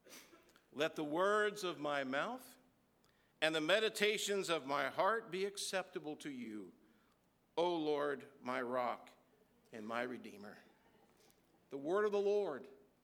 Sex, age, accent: male, 60-79, American